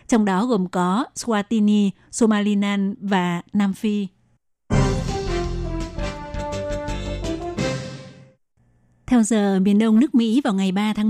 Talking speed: 105 wpm